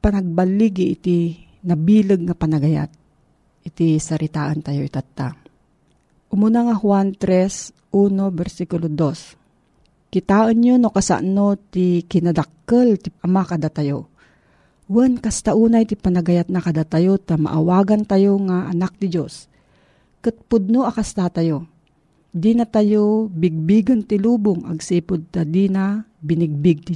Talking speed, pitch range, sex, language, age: 120 wpm, 165-215 Hz, female, Filipino, 40-59